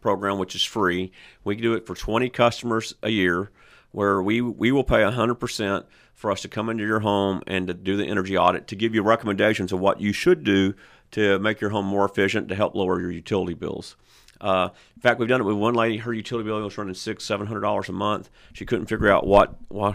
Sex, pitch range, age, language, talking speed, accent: male, 100-115 Hz, 40-59, English, 230 wpm, American